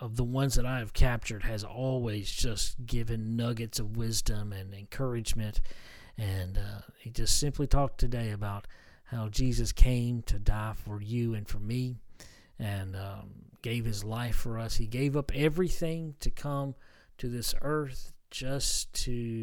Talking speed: 160 wpm